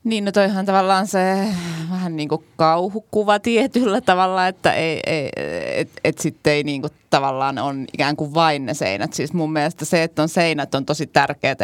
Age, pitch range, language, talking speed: 20-39, 140-170 Hz, Finnish, 185 wpm